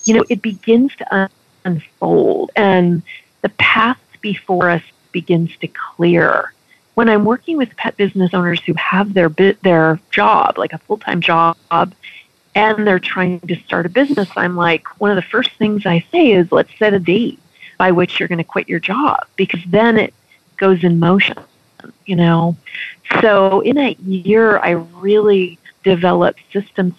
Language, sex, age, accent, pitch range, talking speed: English, female, 40-59, American, 170-200 Hz, 165 wpm